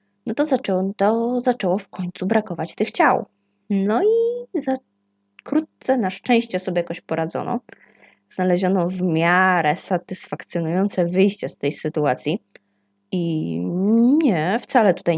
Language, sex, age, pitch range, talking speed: Polish, female, 20-39, 160-210 Hz, 120 wpm